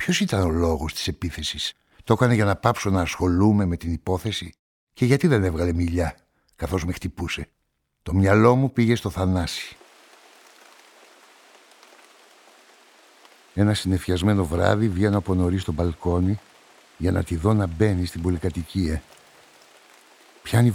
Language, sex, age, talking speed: Greek, male, 60-79, 135 wpm